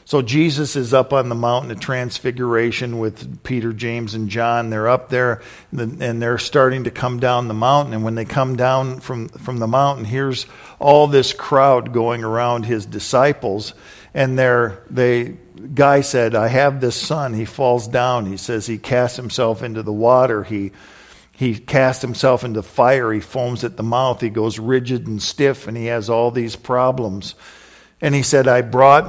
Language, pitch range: English, 115-130 Hz